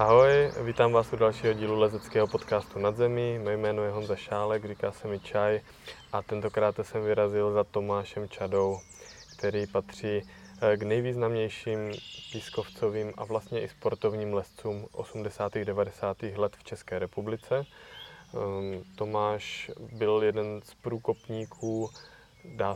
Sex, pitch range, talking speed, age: male, 100-110 Hz, 125 wpm, 20-39